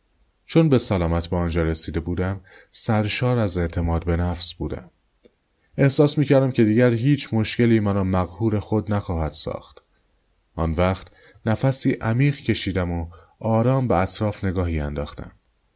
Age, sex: 30-49, male